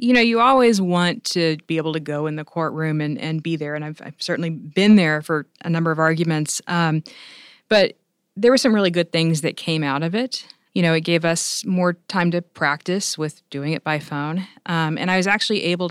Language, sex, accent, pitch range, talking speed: English, female, American, 150-180 Hz, 230 wpm